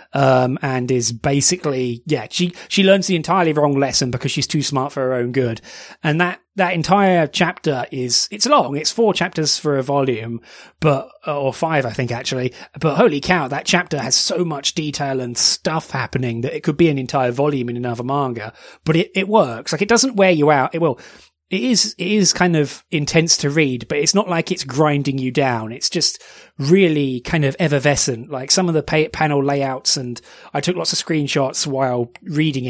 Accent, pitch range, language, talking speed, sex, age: British, 130-170 Hz, English, 205 wpm, male, 30-49